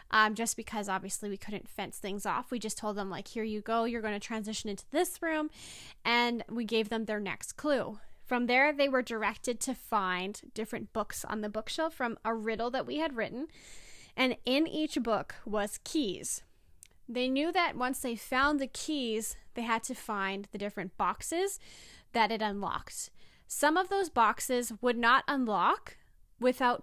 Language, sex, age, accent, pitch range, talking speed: English, female, 10-29, American, 210-250 Hz, 185 wpm